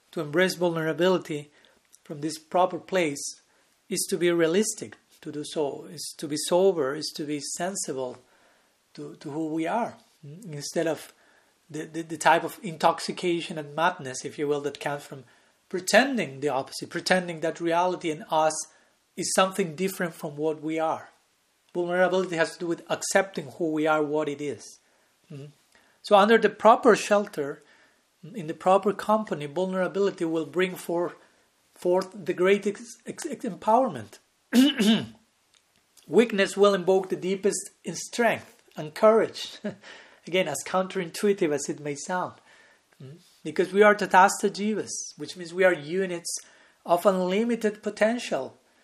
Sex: male